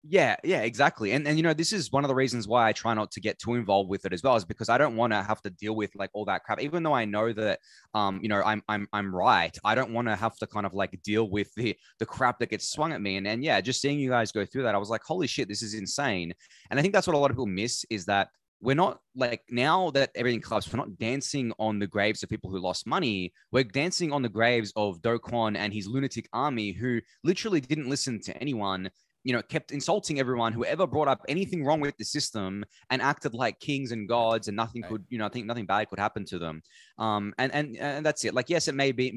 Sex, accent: male, Australian